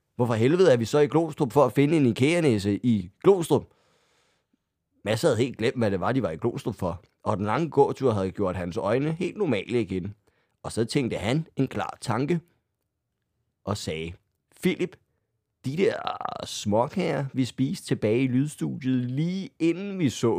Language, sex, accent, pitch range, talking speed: Danish, male, native, 110-160 Hz, 175 wpm